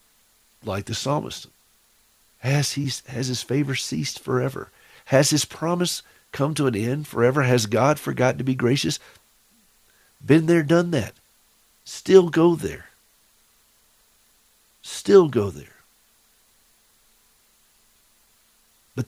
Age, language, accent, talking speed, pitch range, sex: 50-69, English, American, 105 wpm, 100-135 Hz, male